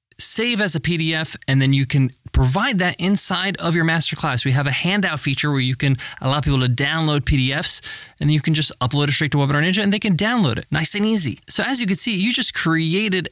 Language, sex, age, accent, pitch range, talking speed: English, male, 20-39, American, 135-180 Hz, 250 wpm